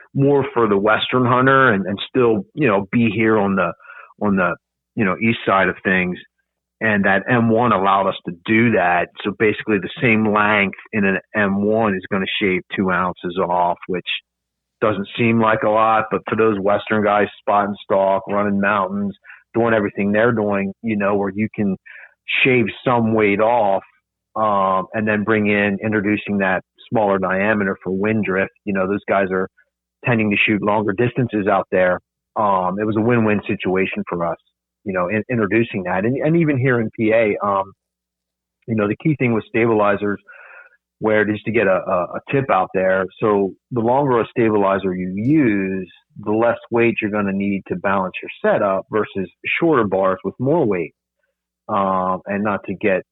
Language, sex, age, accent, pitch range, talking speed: English, male, 40-59, American, 95-110 Hz, 185 wpm